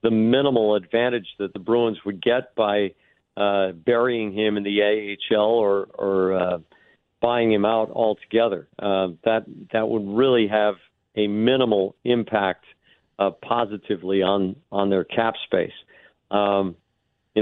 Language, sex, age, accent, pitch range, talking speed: English, male, 50-69, American, 100-120 Hz, 140 wpm